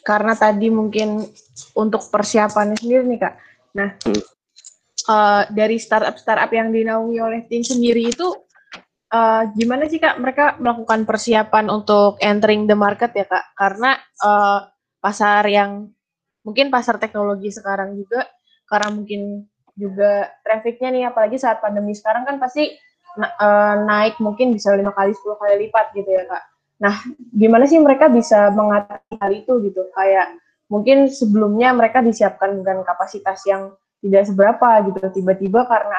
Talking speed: 145 wpm